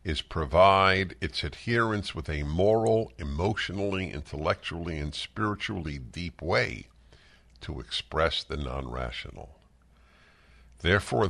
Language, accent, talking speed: English, American, 95 wpm